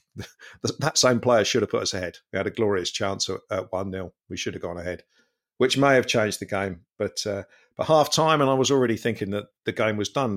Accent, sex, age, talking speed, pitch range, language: British, male, 50-69, 245 wpm, 95-115 Hz, English